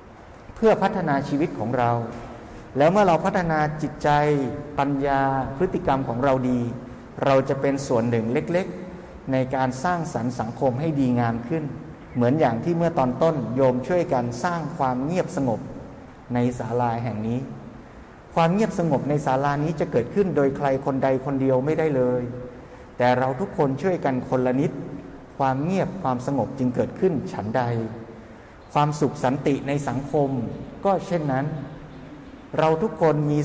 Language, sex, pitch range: Thai, male, 125-165 Hz